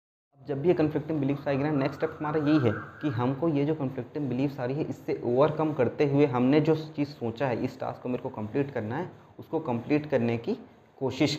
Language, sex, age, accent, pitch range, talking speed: Hindi, male, 20-39, native, 115-145 Hz, 220 wpm